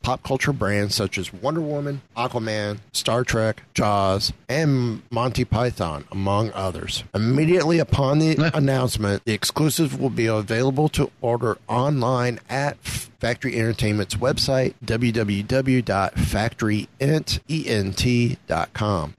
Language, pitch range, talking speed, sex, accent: English, 105-130 Hz, 105 wpm, male, American